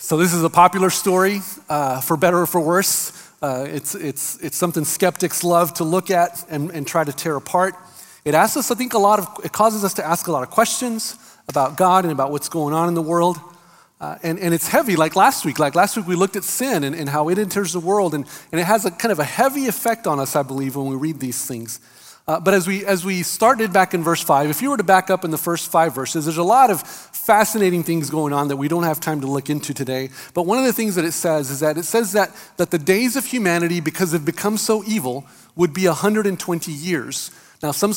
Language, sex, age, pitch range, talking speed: English, male, 40-59, 150-190 Hz, 260 wpm